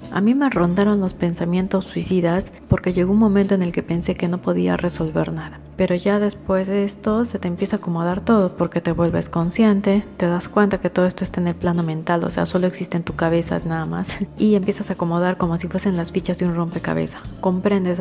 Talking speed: 225 wpm